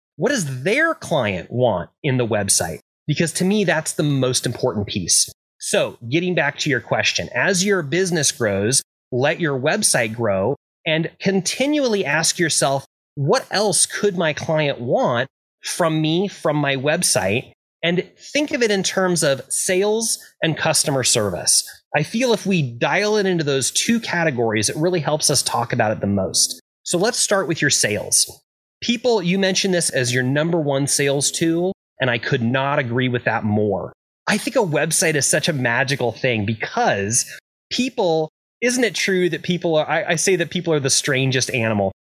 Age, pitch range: 30-49, 130-180 Hz